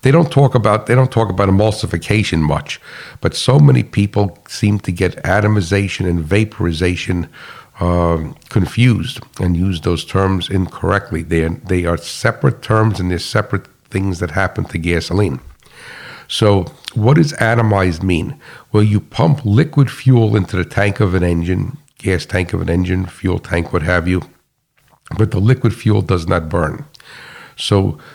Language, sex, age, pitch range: English, male, 60-79, 90-115 Hz